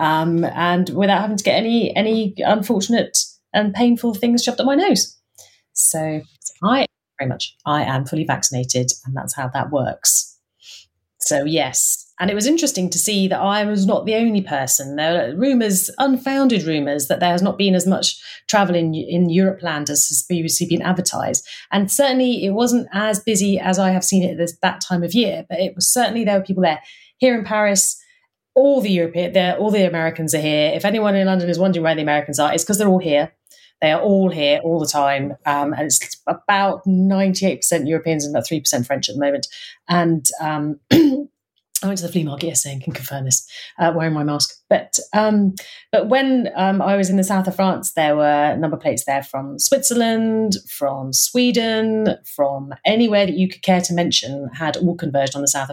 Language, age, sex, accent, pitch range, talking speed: English, 30-49, female, British, 155-220 Hz, 205 wpm